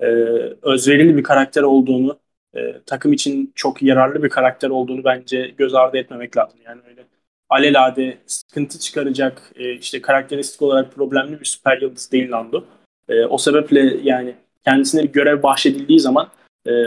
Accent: native